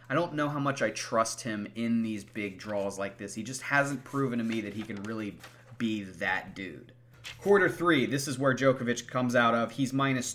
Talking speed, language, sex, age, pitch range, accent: 220 wpm, English, male, 30-49, 105-130 Hz, American